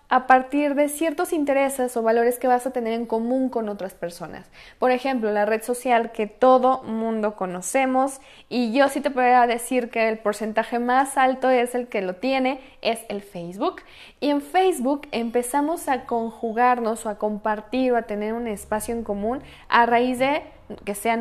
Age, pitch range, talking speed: 10-29, 215-265 Hz, 185 wpm